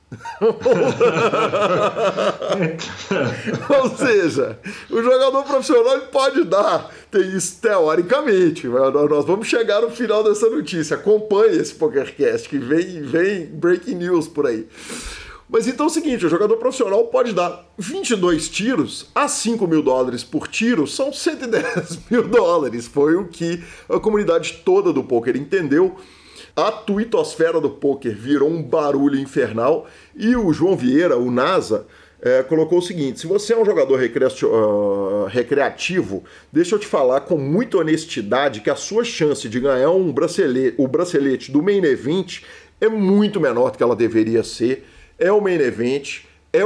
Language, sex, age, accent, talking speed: Portuguese, male, 50-69, Brazilian, 150 wpm